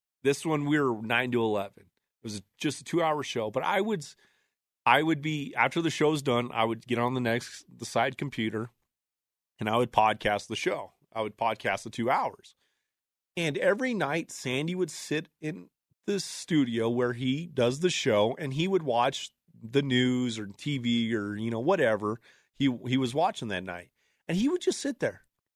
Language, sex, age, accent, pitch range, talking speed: English, male, 30-49, American, 115-175 Hz, 195 wpm